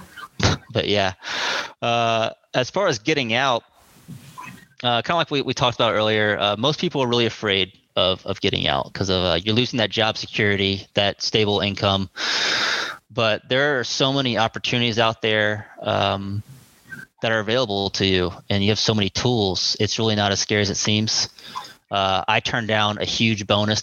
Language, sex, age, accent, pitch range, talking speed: English, male, 20-39, American, 105-125 Hz, 185 wpm